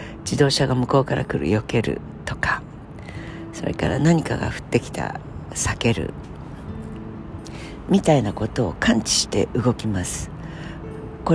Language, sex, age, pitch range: Japanese, female, 60-79, 115-165 Hz